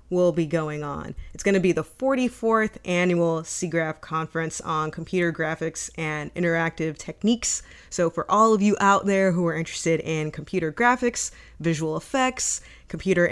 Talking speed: 155 wpm